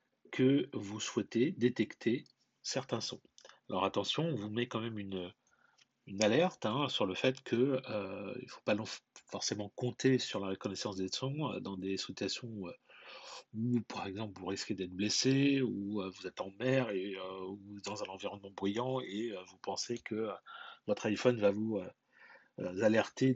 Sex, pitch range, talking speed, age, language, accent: male, 100-125 Hz, 180 wpm, 40-59, French, French